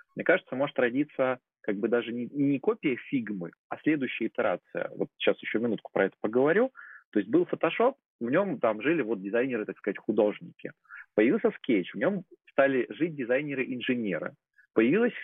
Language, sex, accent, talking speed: Russian, male, native, 160 wpm